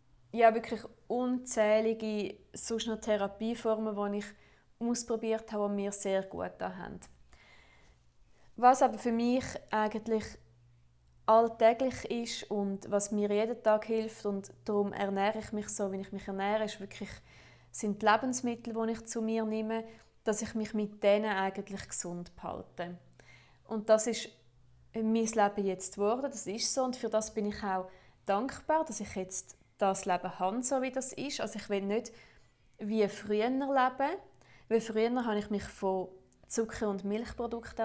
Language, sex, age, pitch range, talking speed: German, female, 20-39, 195-225 Hz, 155 wpm